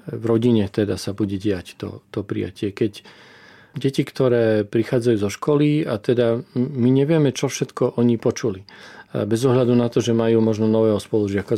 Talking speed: 165 wpm